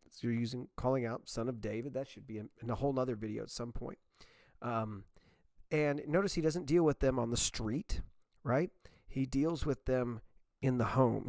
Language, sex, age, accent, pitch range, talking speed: English, male, 40-59, American, 110-150 Hz, 195 wpm